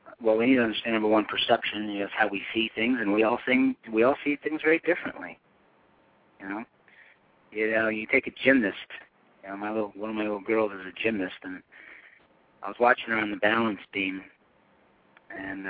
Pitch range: 105-125 Hz